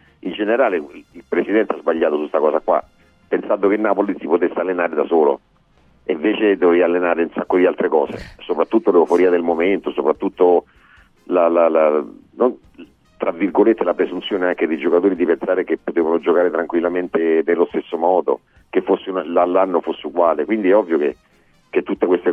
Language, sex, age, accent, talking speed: Italian, male, 40-59, native, 175 wpm